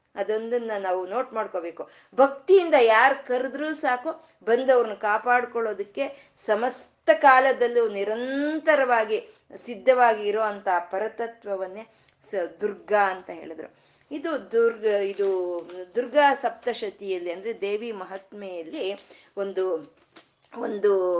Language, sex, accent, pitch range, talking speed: Kannada, female, native, 195-285 Hz, 80 wpm